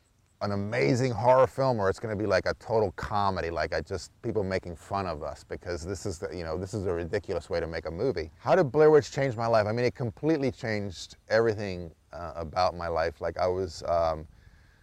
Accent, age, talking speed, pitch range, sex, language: American, 30-49, 225 wpm, 85-105 Hz, male, English